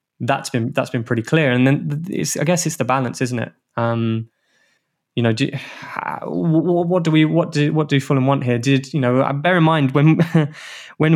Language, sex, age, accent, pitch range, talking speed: English, male, 20-39, British, 120-145 Hz, 210 wpm